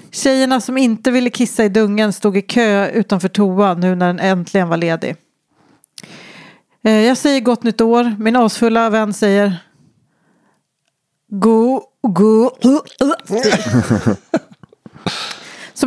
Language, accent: English, Swedish